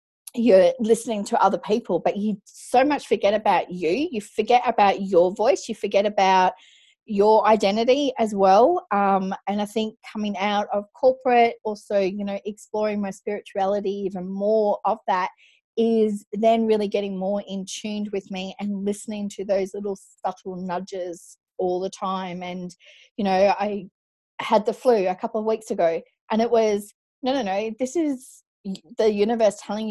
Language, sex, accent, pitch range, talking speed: English, female, Australian, 195-225 Hz, 170 wpm